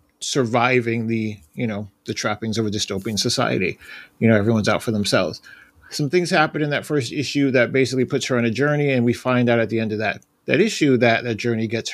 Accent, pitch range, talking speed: American, 115-140 Hz, 225 wpm